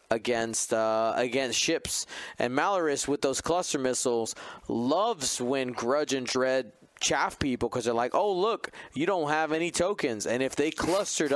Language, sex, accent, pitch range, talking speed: English, male, American, 120-155 Hz, 165 wpm